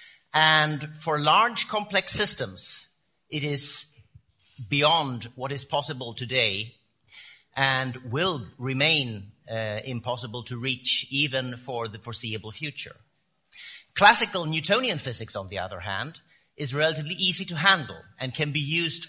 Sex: male